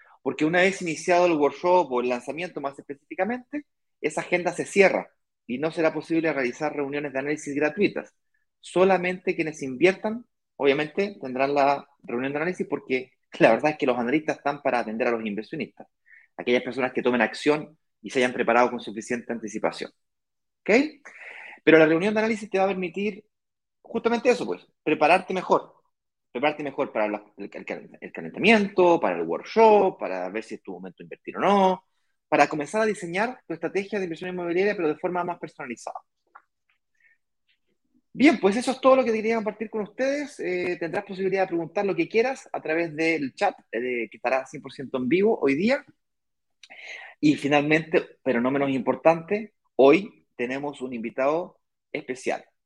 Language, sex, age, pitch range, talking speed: Spanish, male, 30-49, 135-205 Hz, 165 wpm